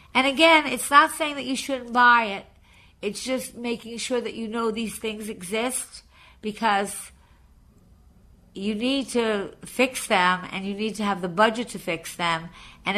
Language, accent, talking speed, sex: English, American, 170 wpm, female